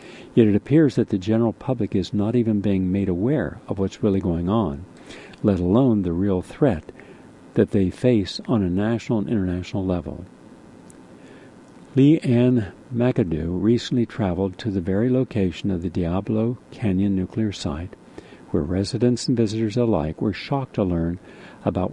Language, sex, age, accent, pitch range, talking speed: English, male, 60-79, American, 95-120 Hz, 155 wpm